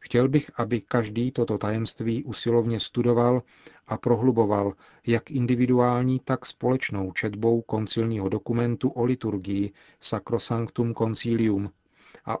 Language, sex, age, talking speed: Czech, male, 40-59, 105 wpm